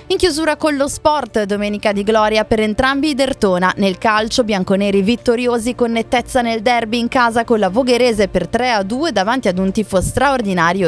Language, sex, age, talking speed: Italian, female, 20-39, 175 wpm